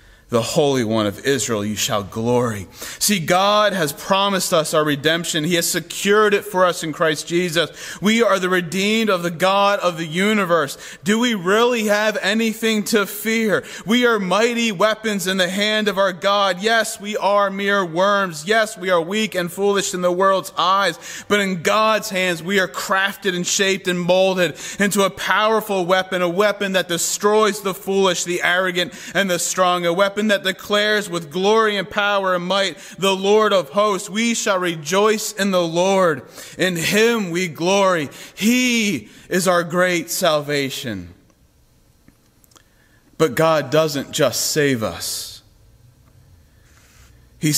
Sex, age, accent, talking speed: male, 30-49, American, 160 wpm